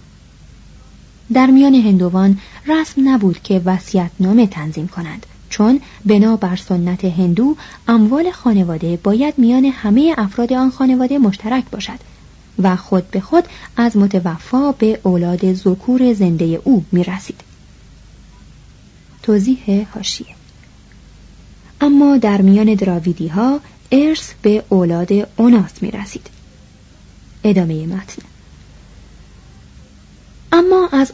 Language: Persian